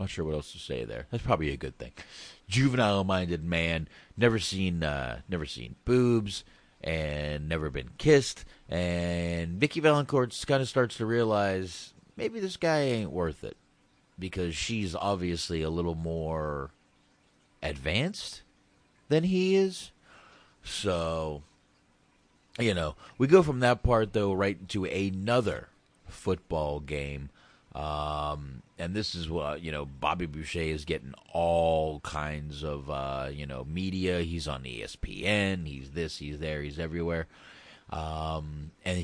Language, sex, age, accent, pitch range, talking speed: English, male, 40-59, American, 80-100 Hz, 140 wpm